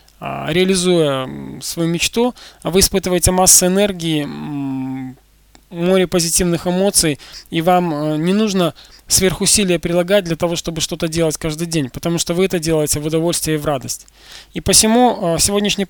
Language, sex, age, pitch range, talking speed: Russian, male, 20-39, 160-185 Hz, 135 wpm